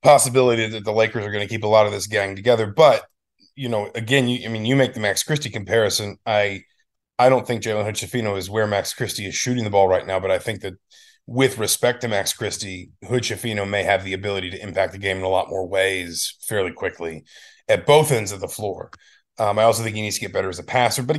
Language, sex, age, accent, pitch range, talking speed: English, male, 30-49, American, 100-120 Hz, 245 wpm